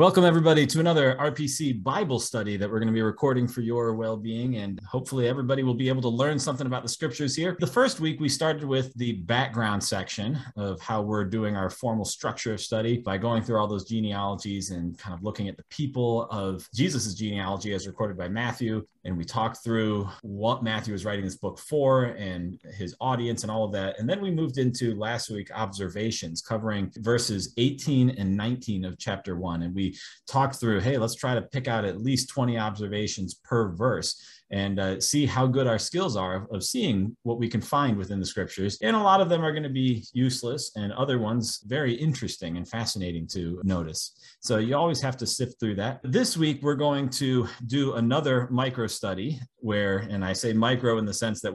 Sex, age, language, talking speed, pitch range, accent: male, 30-49, English, 205 wpm, 100-130 Hz, American